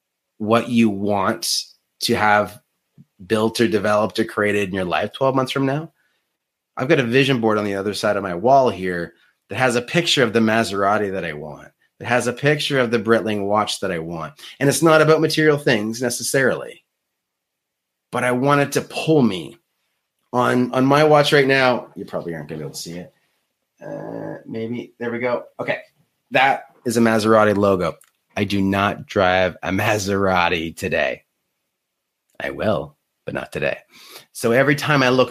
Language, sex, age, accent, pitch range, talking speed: English, male, 30-49, American, 100-135 Hz, 185 wpm